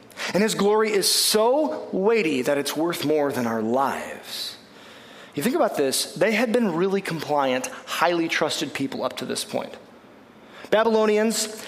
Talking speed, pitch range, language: 155 wpm, 140-220 Hz, English